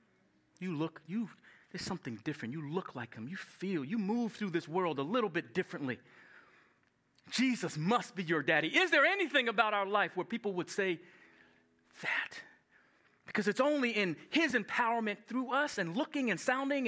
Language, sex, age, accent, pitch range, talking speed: English, male, 30-49, American, 140-215 Hz, 175 wpm